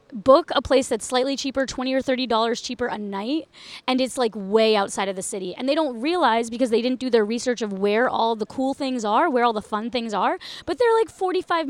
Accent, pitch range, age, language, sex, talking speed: American, 220-280 Hz, 20-39, English, female, 240 wpm